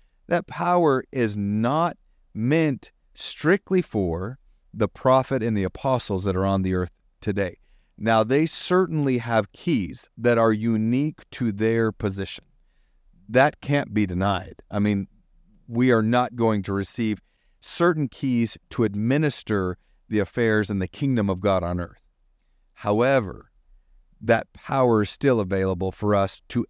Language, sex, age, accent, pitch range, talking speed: English, male, 40-59, American, 100-130 Hz, 140 wpm